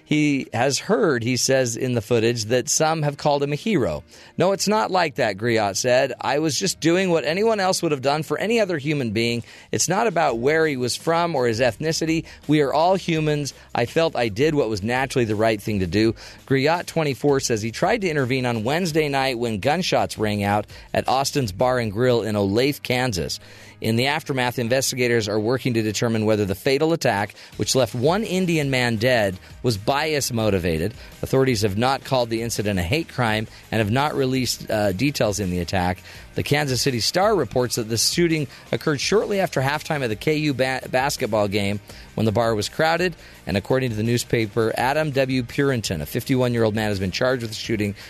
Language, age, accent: English, 40-59, American